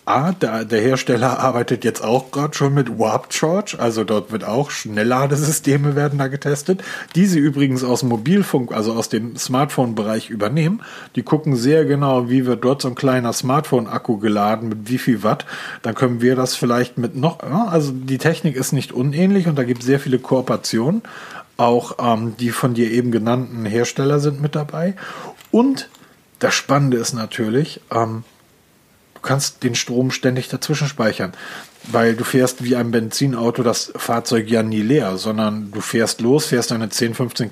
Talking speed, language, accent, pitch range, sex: 175 wpm, German, German, 115-145 Hz, male